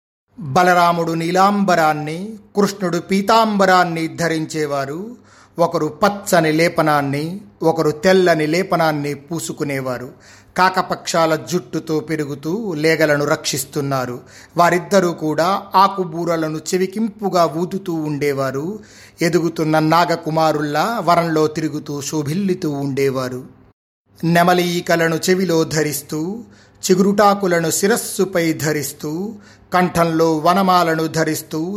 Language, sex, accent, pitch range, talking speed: Telugu, male, native, 150-180 Hz, 60 wpm